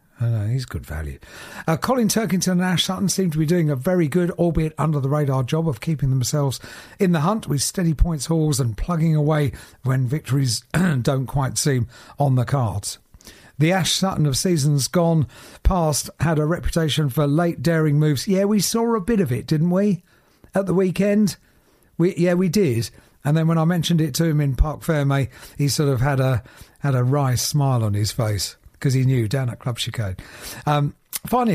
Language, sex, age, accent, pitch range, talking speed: English, male, 50-69, British, 130-165 Hz, 200 wpm